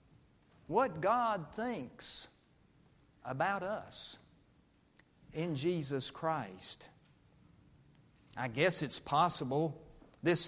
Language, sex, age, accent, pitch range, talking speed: English, male, 50-69, American, 140-195 Hz, 75 wpm